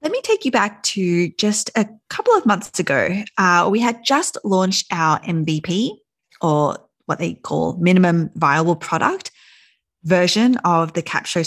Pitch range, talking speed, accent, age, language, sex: 170-245 Hz, 155 wpm, Australian, 20-39, English, female